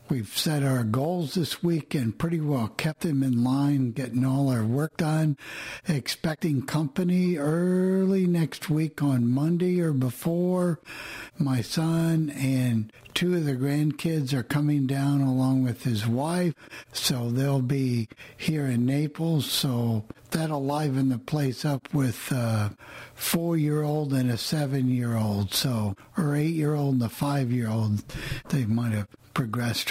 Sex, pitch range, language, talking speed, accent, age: male, 125-155 Hz, English, 140 wpm, American, 60-79